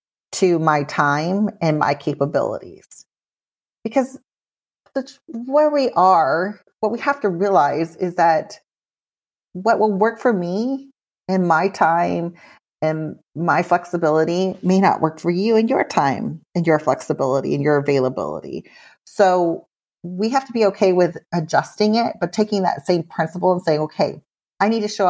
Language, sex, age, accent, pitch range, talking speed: English, female, 30-49, American, 160-210 Hz, 150 wpm